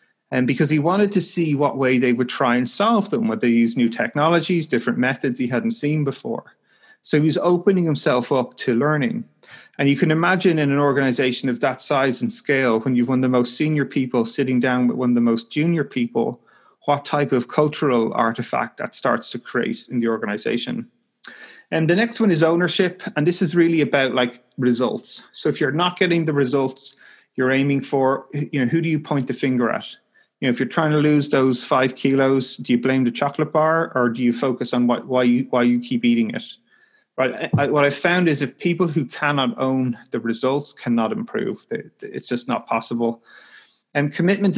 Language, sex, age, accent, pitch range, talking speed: English, male, 30-49, Irish, 125-165 Hz, 210 wpm